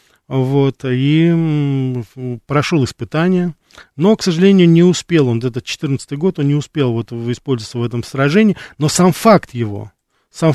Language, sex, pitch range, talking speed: Russian, male, 120-165 Hz, 150 wpm